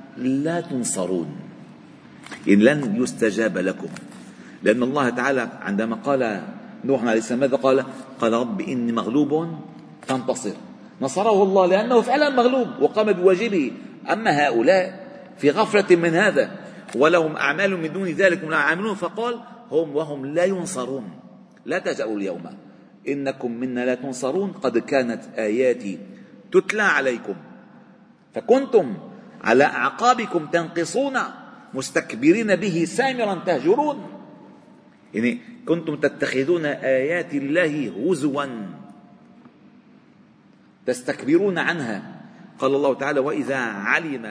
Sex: male